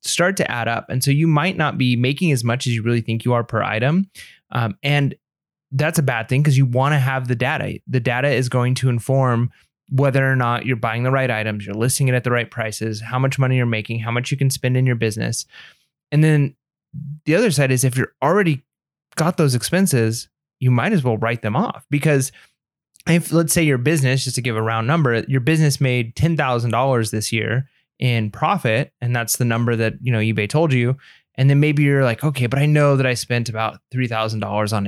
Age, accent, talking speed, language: 20-39, American, 225 wpm, English